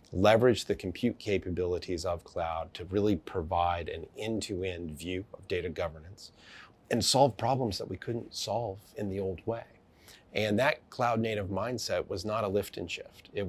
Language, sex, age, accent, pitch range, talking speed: English, male, 30-49, American, 90-110 Hz, 165 wpm